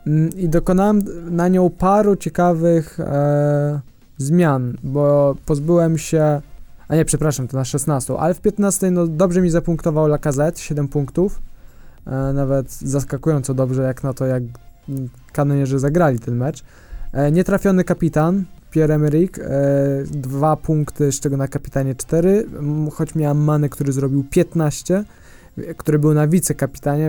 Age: 20-39